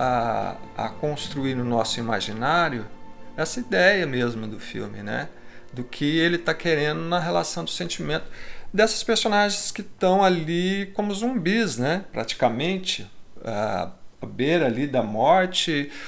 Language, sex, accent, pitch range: Portuguese, male, Brazilian, 120-185 Hz